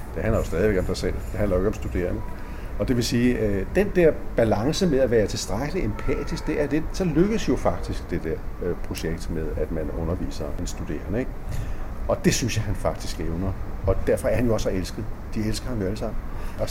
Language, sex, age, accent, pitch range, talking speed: Danish, male, 60-79, native, 85-110 Hz, 225 wpm